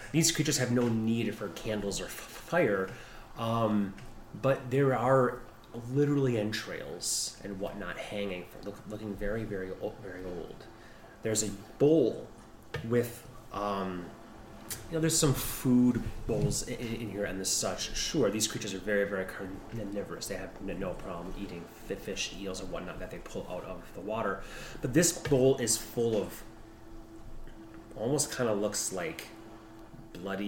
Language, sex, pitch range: English, male, 105-120 Hz